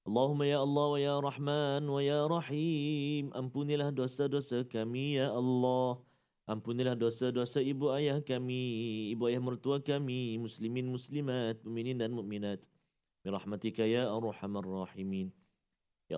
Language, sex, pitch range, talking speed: Malayalam, male, 120-150 Hz, 120 wpm